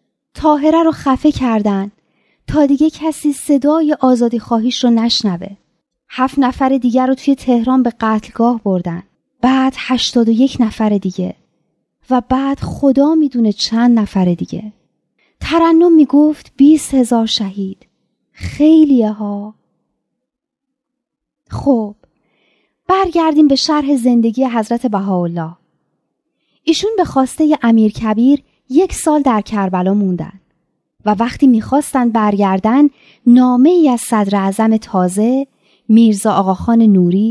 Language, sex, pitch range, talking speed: Persian, female, 215-275 Hz, 115 wpm